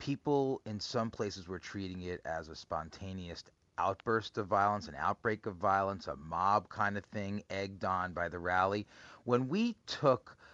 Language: English